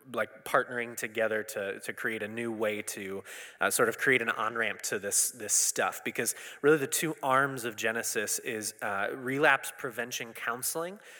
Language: English